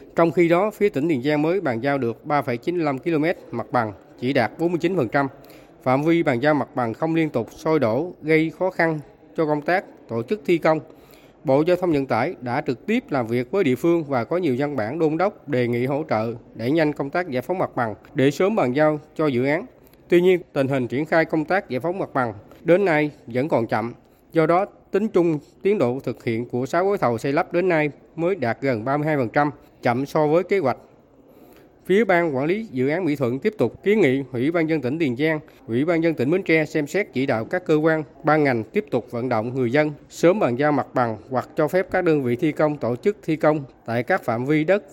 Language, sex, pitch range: Vietnamese, male, 125-165 Hz